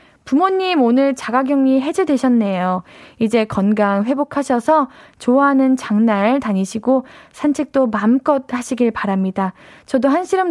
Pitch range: 210-275 Hz